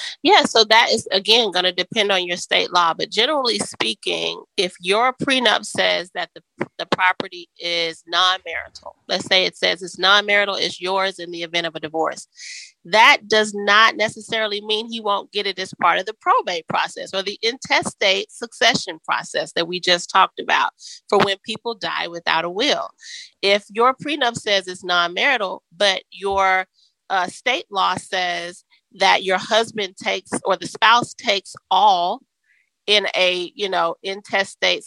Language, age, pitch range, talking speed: English, 30-49, 180-220 Hz, 165 wpm